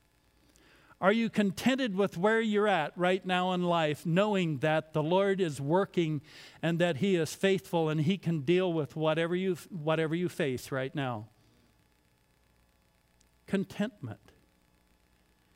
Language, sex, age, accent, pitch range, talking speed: English, male, 60-79, American, 145-195 Hz, 135 wpm